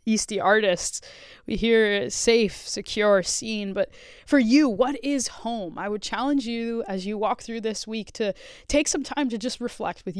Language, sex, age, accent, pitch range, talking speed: English, female, 20-39, American, 190-240 Hz, 180 wpm